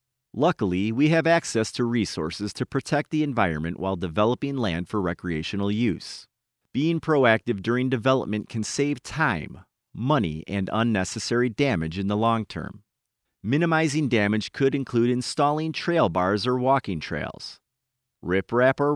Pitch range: 105-140 Hz